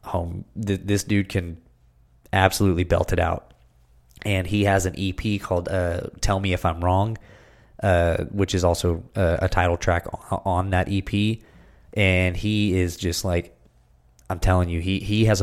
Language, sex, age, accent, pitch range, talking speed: English, male, 20-39, American, 85-100 Hz, 165 wpm